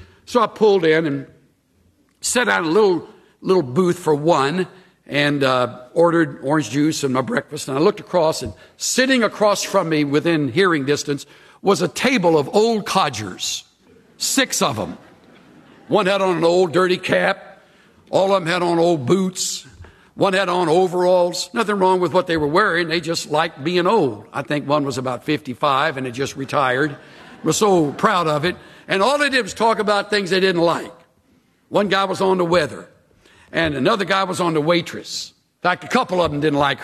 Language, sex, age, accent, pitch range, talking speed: English, male, 60-79, American, 145-195 Hz, 195 wpm